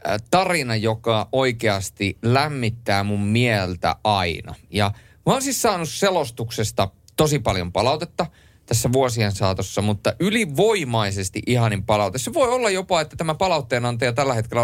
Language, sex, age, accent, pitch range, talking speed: Finnish, male, 30-49, native, 100-130 Hz, 130 wpm